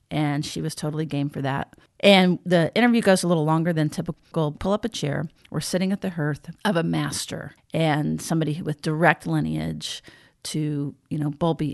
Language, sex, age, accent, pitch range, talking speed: English, female, 40-59, American, 150-175 Hz, 190 wpm